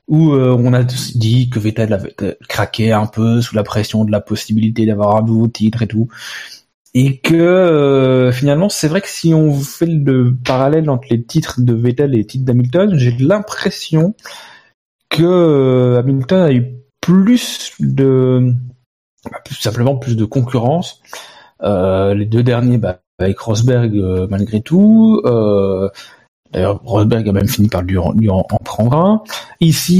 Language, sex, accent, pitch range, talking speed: French, male, French, 110-145 Hz, 165 wpm